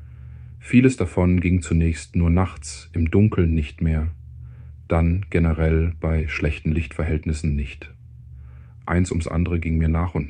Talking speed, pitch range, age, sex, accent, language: 135 wpm, 75-85 Hz, 40-59, male, German, German